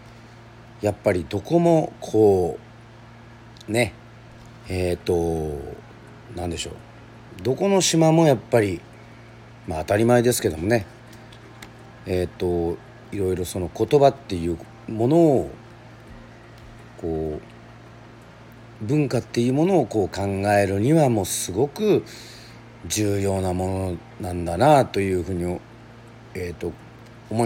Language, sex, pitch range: Japanese, male, 90-120 Hz